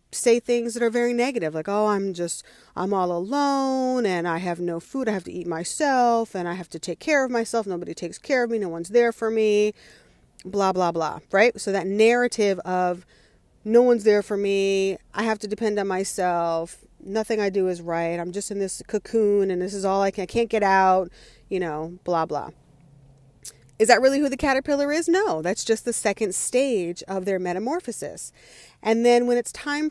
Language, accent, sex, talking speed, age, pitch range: English, American, female, 210 wpm, 30-49, 185-240 Hz